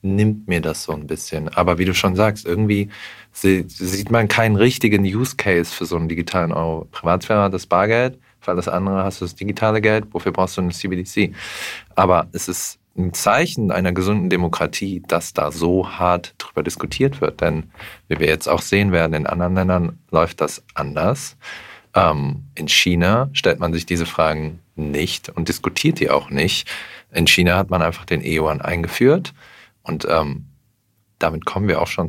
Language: German